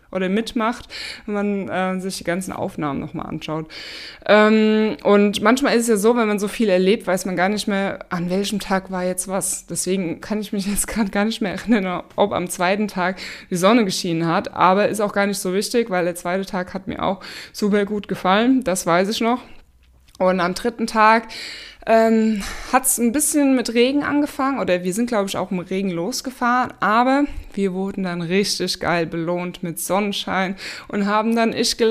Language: German